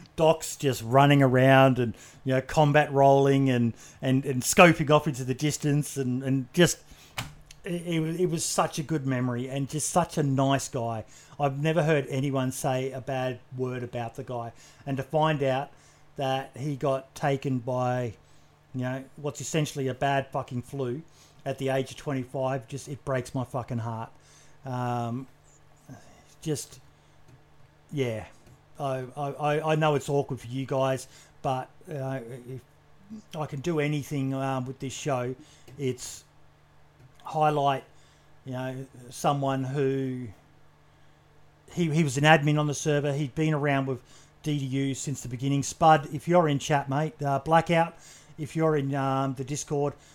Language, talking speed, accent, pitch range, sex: English, 160 wpm, Australian, 130-150 Hz, male